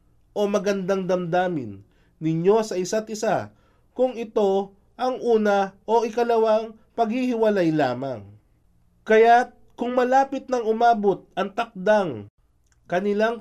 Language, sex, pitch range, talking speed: Filipino, male, 165-230 Hz, 105 wpm